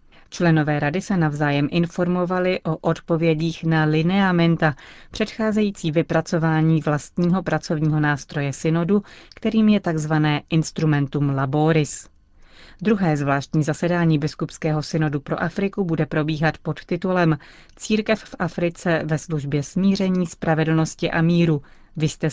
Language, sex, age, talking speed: Czech, female, 30-49, 115 wpm